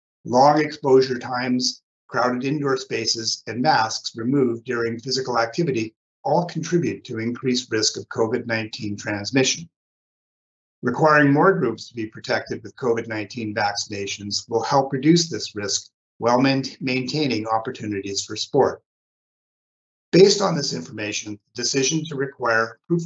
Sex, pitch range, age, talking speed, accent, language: male, 110-140 Hz, 50-69, 125 wpm, American, English